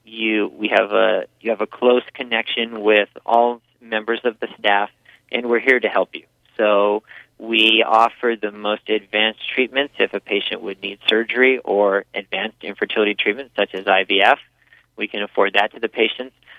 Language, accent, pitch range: English, American, 105-120 Hz